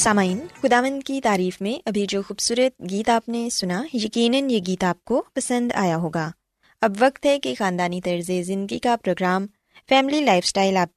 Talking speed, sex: 180 wpm, female